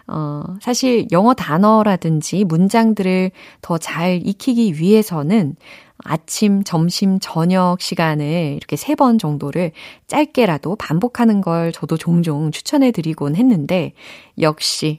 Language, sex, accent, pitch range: Korean, female, native, 160-250 Hz